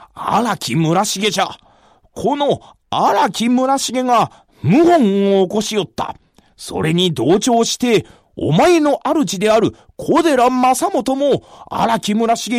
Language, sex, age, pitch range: Japanese, male, 40-59, 185-250 Hz